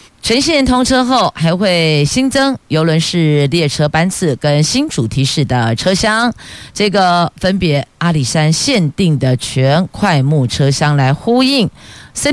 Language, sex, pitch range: Chinese, female, 135-185 Hz